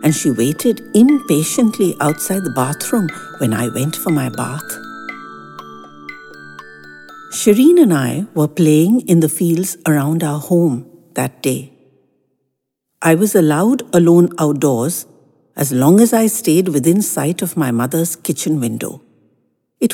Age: 60-79